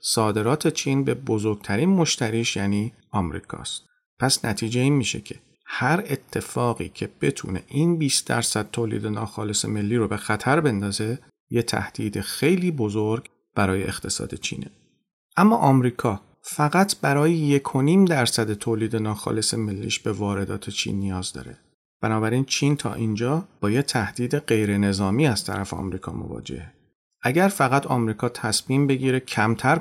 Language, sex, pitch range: Persian, male, 105-140 Hz